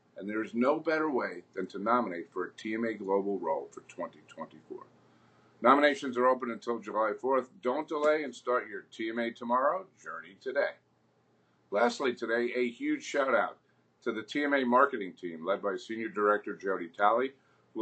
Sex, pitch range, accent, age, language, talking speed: male, 110-140 Hz, American, 50-69, English, 165 wpm